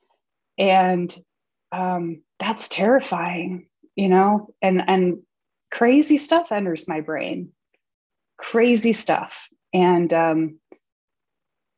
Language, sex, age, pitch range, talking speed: English, female, 30-49, 185-245 Hz, 85 wpm